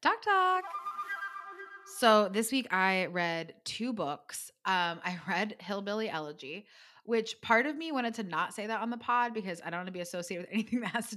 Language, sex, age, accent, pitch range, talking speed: English, female, 20-39, American, 175-245 Hz, 205 wpm